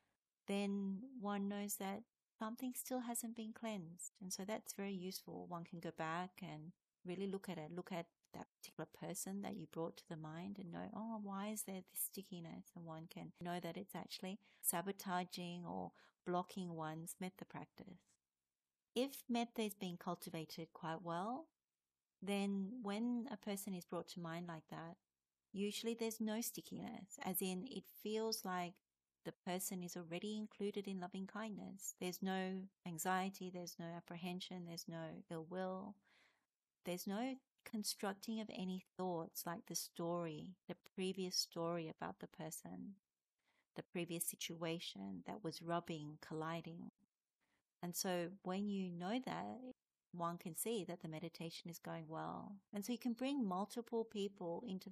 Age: 40-59